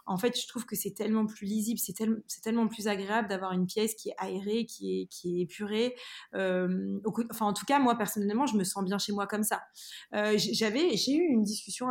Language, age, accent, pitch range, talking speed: French, 20-39, French, 190-230 Hz, 240 wpm